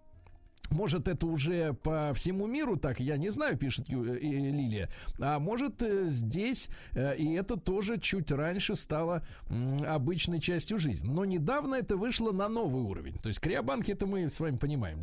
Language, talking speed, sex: Russian, 155 wpm, male